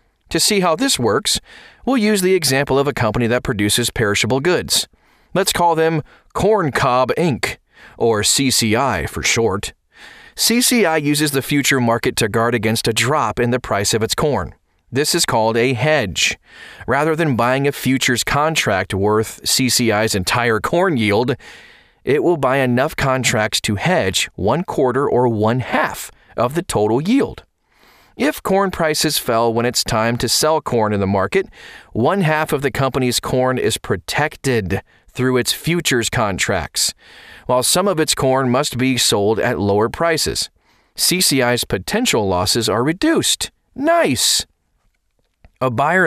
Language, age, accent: English, 30-49, American